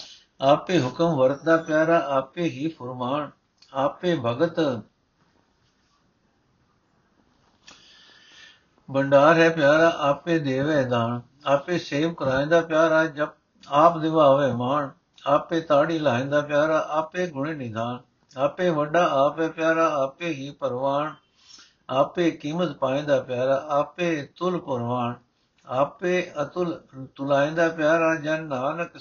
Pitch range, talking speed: 130-160 Hz, 110 wpm